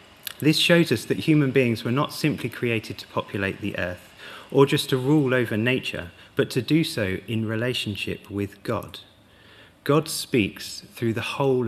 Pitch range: 100-125 Hz